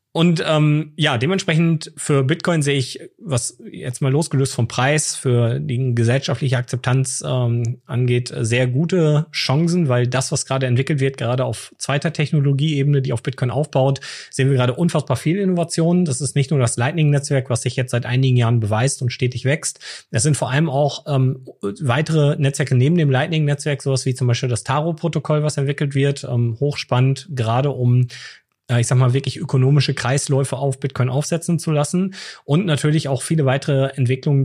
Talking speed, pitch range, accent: 175 wpm, 125-150 Hz, German